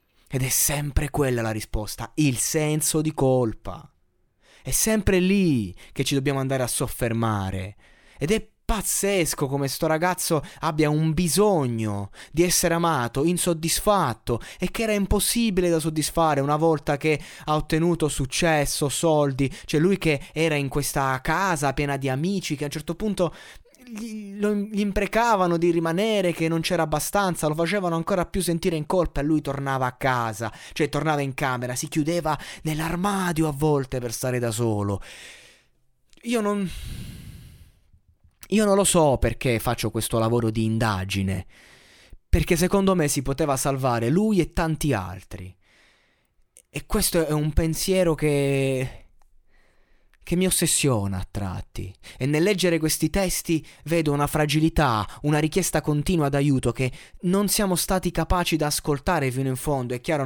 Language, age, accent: Italian, 20-39, native